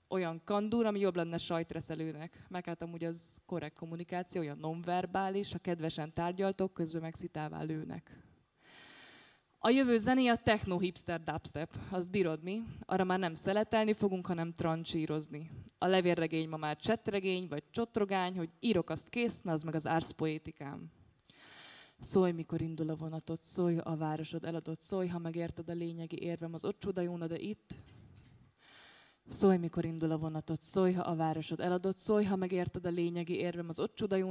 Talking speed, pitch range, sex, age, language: 155 wpm, 160-190 Hz, female, 20-39, Czech